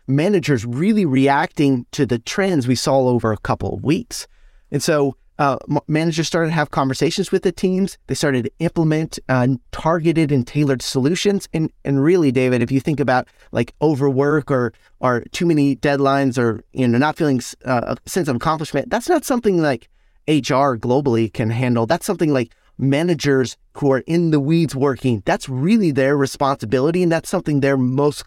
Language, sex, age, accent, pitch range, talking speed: English, male, 30-49, American, 130-165 Hz, 185 wpm